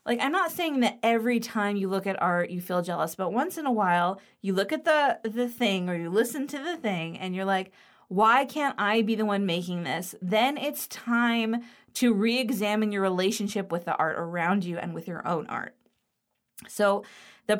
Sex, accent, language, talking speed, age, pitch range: female, American, English, 210 wpm, 20-39, 185-235 Hz